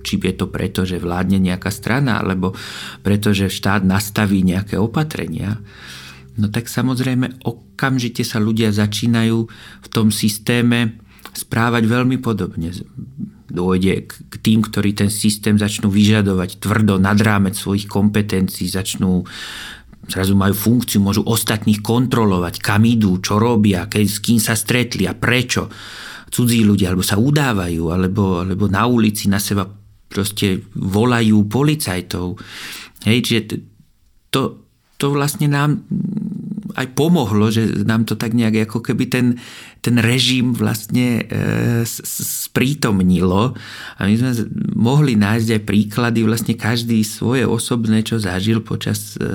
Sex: male